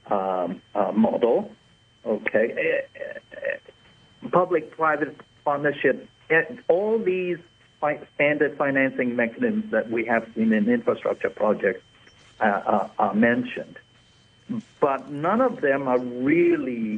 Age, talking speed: 60-79, 115 wpm